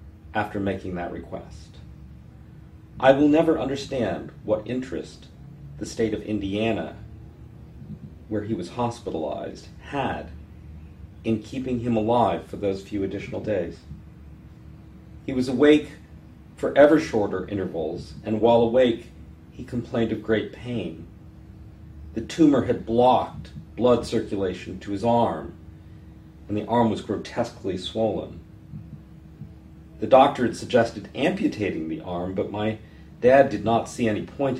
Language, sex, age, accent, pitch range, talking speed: English, male, 40-59, American, 80-115 Hz, 125 wpm